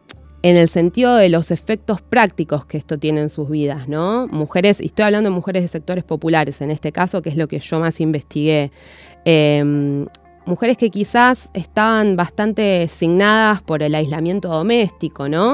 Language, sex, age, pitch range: Spanish, female, 20-39, 150-190 Hz